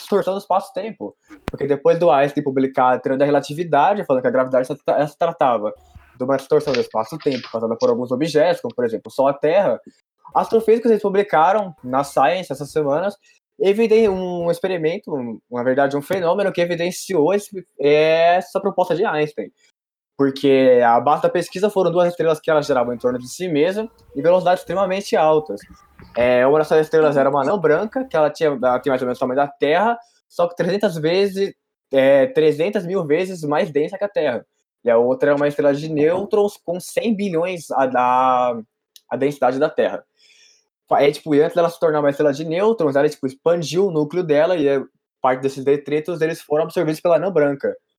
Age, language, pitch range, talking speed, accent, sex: 20-39, Portuguese, 140-185 Hz, 180 wpm, Brazilian, male